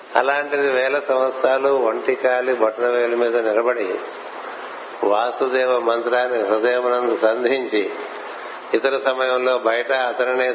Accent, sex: native, male